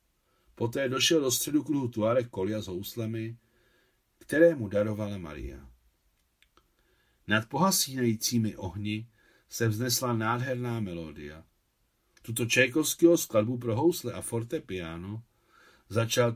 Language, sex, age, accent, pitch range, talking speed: Czech, male, 50-69, native, 100-125 Hz, 105 wpm